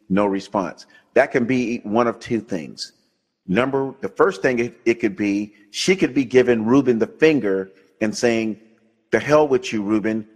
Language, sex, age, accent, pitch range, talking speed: English, male, 40-59, American, 110-130 Hz, 175 wpm